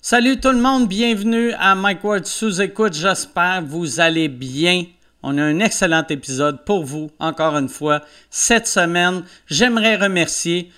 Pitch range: 170-235 Hz